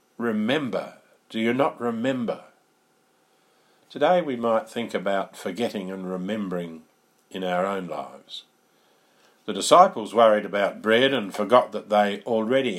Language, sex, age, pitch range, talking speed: English, male, 50-69, 100-120 Hz, 125 wpm